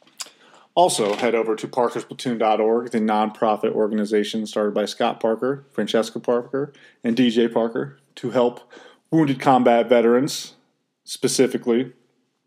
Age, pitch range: 20-39, 110-125 Hz